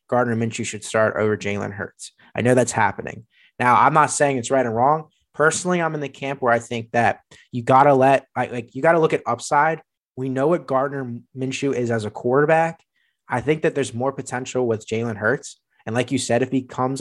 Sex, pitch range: male, 115-140 Hz